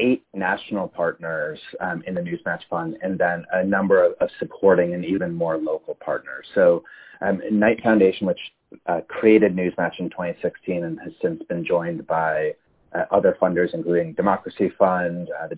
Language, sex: English, male